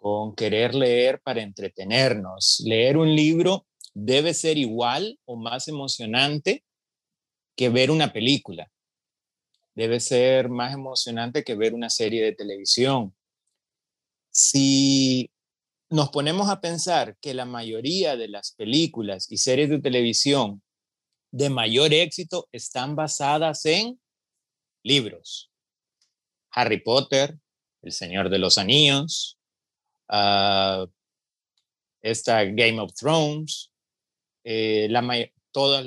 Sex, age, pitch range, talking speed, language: male, 30-49, 110-145 Hz, 110 wpm, Spanish